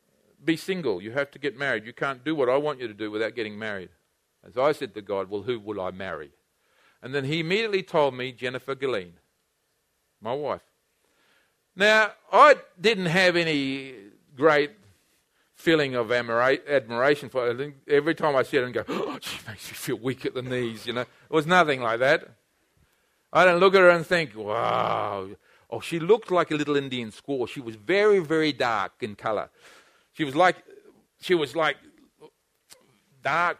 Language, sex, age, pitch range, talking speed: English, male, 50-69, 130-190 Hz, 180 wpm